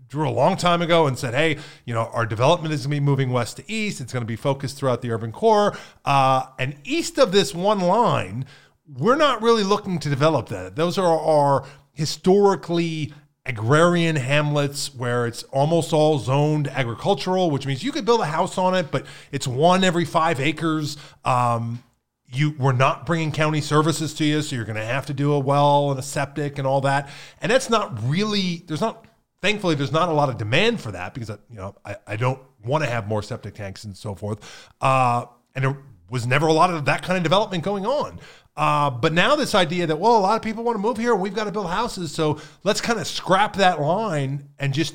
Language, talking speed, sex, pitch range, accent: English, 220 wpm, male, 135-175 Hz, American